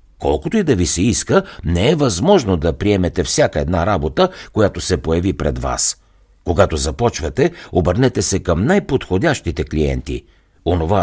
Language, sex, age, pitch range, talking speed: Bulgarian, male, 60-79, 80-115 Hz, 145 wpm